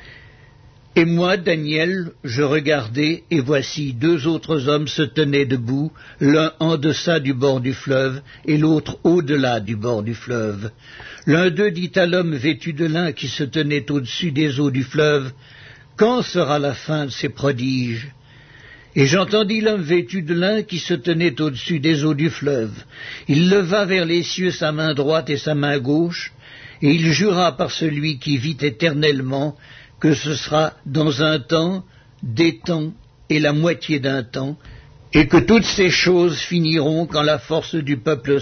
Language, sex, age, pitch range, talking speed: French, male, 60-79, 135-165 Hz, 170 wpm